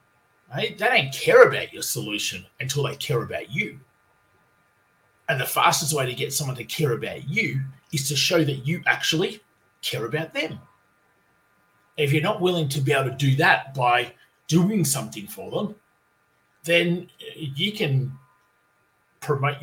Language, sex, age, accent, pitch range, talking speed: English, male, 30-49, Australian, 135-175 Hz, 155 wpm